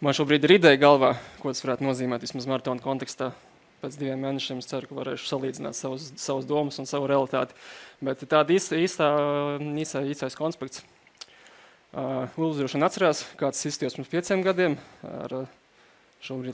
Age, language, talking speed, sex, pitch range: 20-39, English, 135 wpm, male, 130-150 Hz